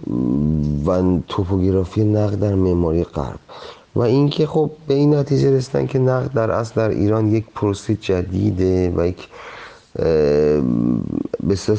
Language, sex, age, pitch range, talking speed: Persian, male, 30-49, 95-110 Hz, 120 wpm